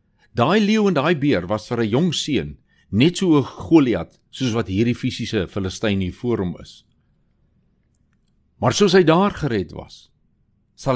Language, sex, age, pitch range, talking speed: Swedish, male, 60-79, 95-145 Hz, 150 wpm